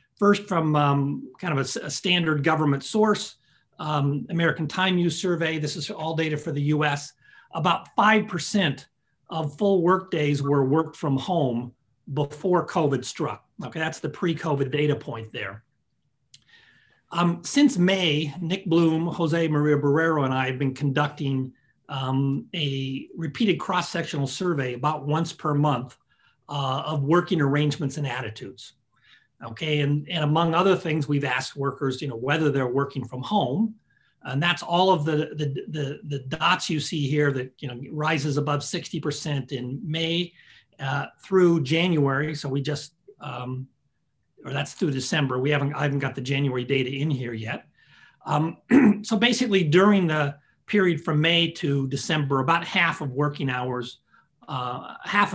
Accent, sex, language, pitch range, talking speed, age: American, male, English, 140-170 Hz, 155 wpm, 40-59